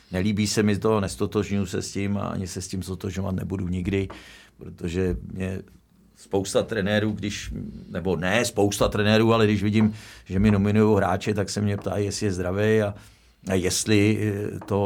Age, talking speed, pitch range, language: 50-69, 175 wpm, 95-105 Hz, Czech